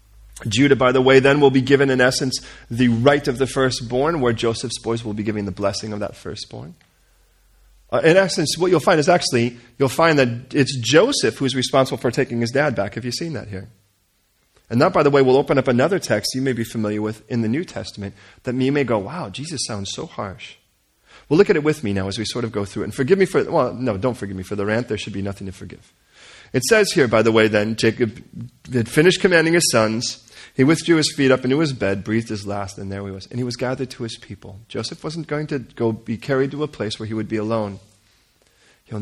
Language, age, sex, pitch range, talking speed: English, 40-59, male, 105-135 Hz, 250 wpm